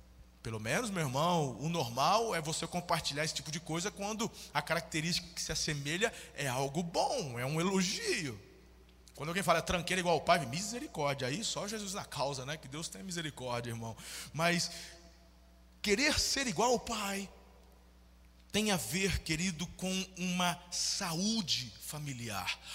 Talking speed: 155 wpm